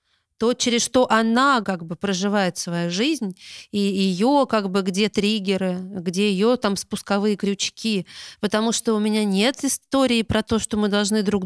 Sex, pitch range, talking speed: female, 190-225 Hz, 170 wpm